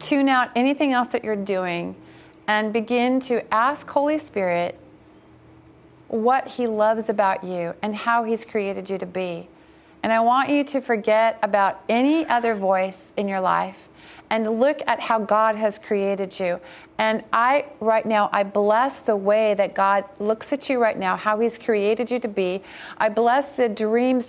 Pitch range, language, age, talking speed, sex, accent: 205-250 Hz, English, 40-59, 175 wpm, female, American